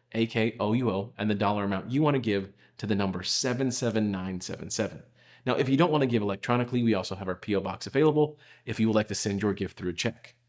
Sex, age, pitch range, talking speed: male, 40-59, 100-120 Hz, 245 wpm